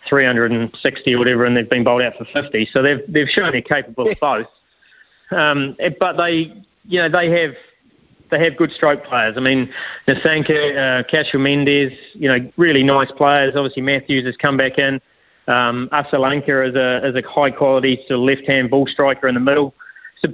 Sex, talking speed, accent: male, 195 wpm, Australian